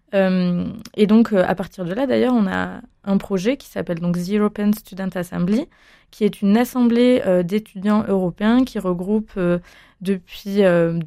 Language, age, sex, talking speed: French, 20-39, female, 155 wpm